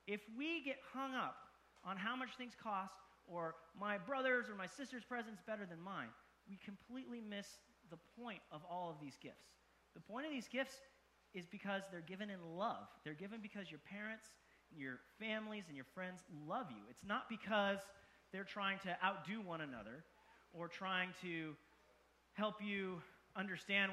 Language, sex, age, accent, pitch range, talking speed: English, male, 30-49, American, 180-240 Hz, 175 wpm